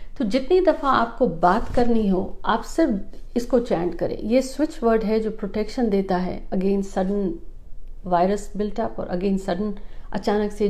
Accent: native